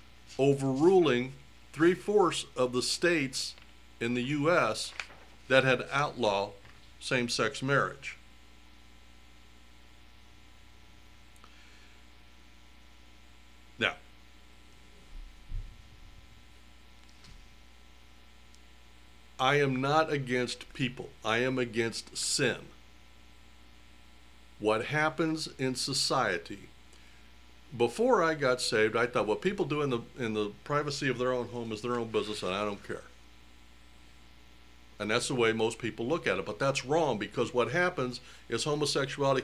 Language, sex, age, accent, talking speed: English, male, 60-79, American, 105 wpm